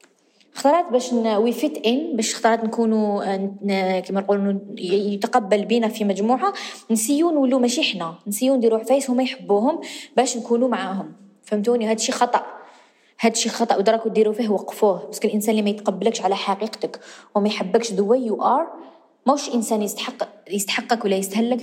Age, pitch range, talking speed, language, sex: 20-39, 195-245 Hz, 155 wpm, Arabic, female